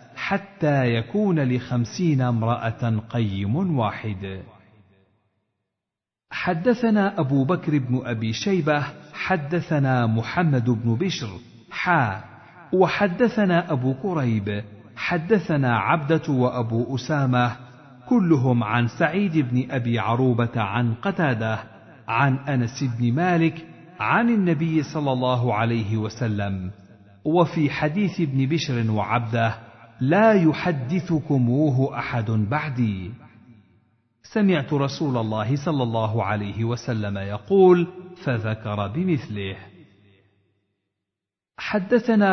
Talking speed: 90 wpm